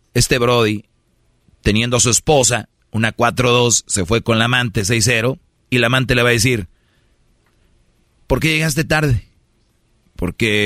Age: 40-59